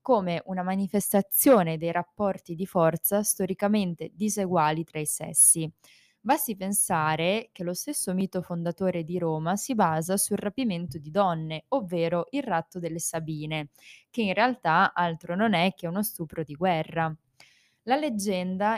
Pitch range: 165-195 Hz